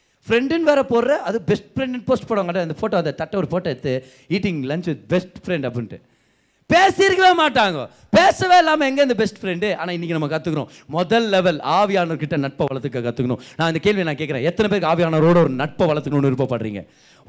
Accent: native